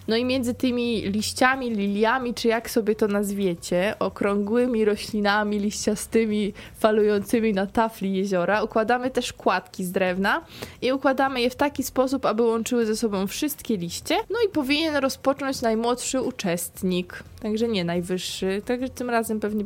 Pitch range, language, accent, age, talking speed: 195-240 Hz, Polish, native, 20-39, 145 wpm